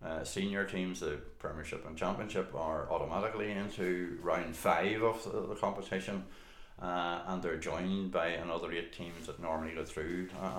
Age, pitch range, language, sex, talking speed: 60-79, 80-95 Hz, English, male, 165 wpm